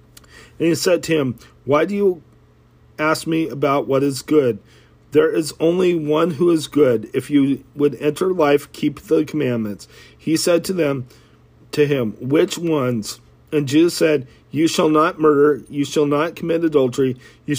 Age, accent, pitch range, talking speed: 40-59, American, 125-155 Hz, 170 wpm